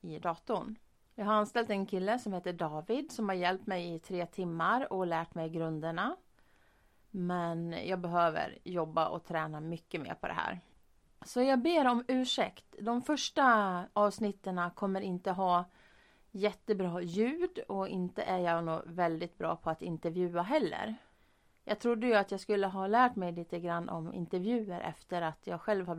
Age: 30-49